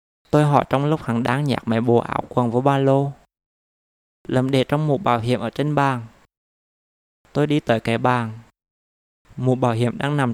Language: Vietnamese